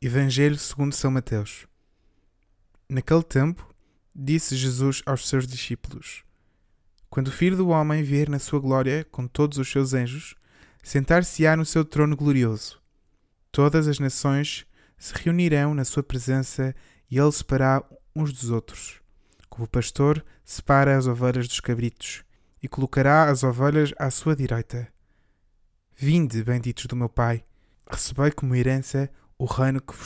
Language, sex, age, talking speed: Portuguese, male, 20-39, 140 wpm